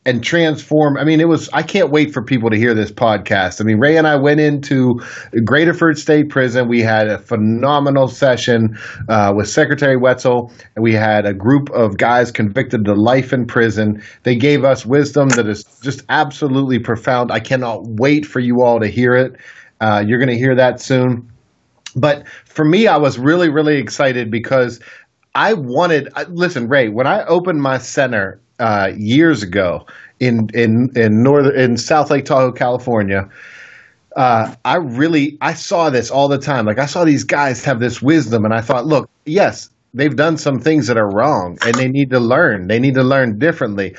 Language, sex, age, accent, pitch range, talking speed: English, male, 30-49, American, 115-145 Hz, 190 wpm